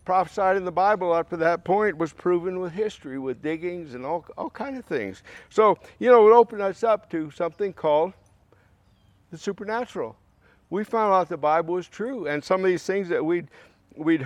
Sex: male